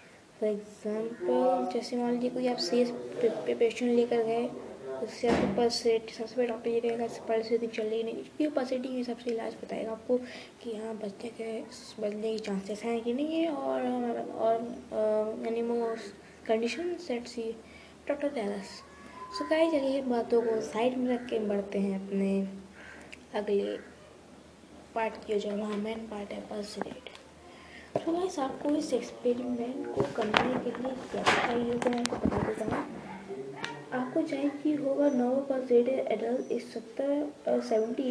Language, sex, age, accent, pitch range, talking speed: Hindi, female, 20-39, native, 210-260 Hz, 130 wpm